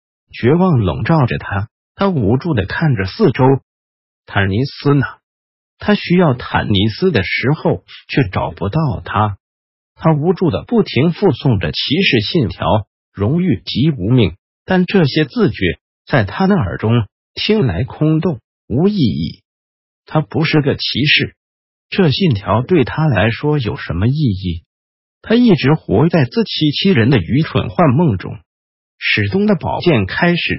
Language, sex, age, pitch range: Chinese, male, 50-69, 100-170 Hz